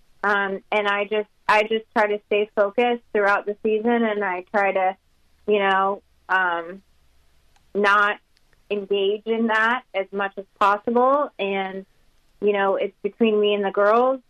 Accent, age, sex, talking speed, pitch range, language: American, 30-49, female, 155 wpm, 190-215 Hz, English